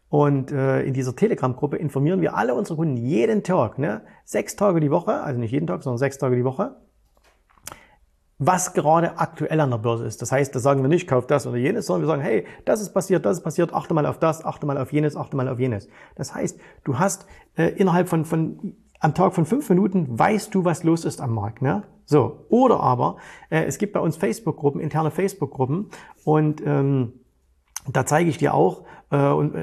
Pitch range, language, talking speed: 135-170 Hz, German, 215 wpm